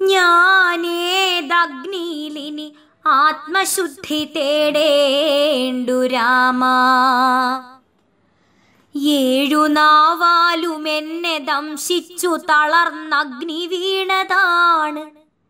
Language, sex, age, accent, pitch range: Malayalam, male, 20-39, native, 295-385 Hz